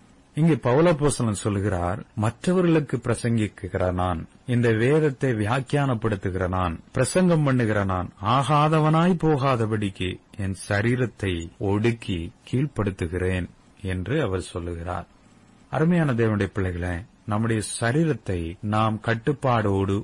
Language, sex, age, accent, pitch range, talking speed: Tamil, male, 30-49, native, 95-125 Hz, 85 wpm